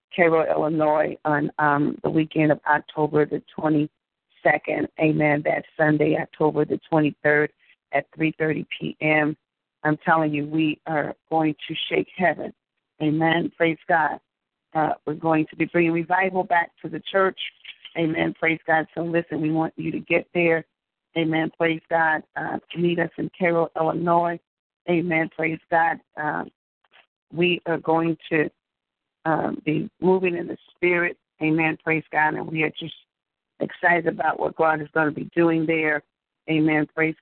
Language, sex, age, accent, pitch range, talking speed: English, female, 40-59, American, 150-165 Hz, 155 wpm